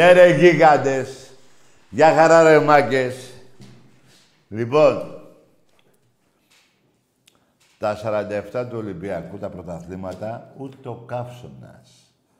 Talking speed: 75 wpm